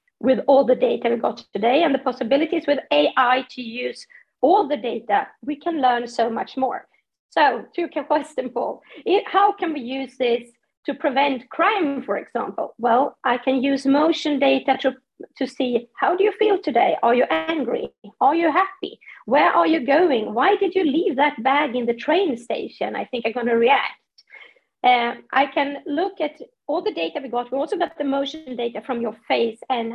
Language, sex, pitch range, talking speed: English, female, 245-320 Hz, 195 wpm